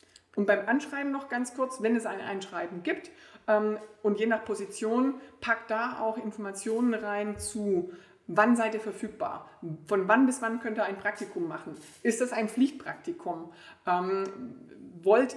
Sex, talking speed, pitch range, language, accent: female, 155 wpm, 195-235 Hz, German, German